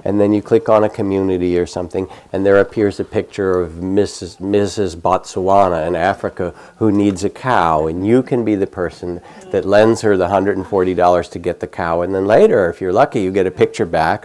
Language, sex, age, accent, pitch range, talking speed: English, male, 50-69, American, 90-110 Hz, 225 wpm